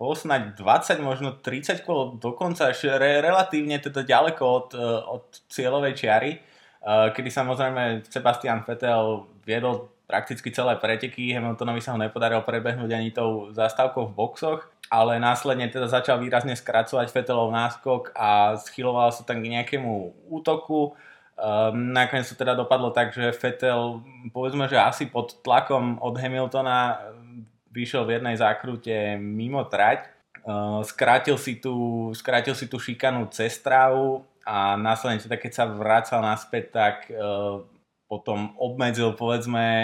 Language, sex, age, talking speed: Slovak, male, 20-39, 130 wpm